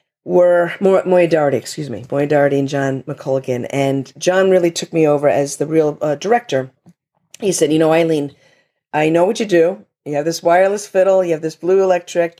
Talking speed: 180 wpm